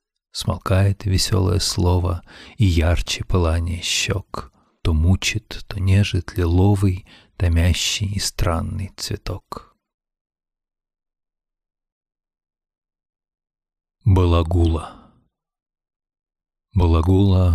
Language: Russian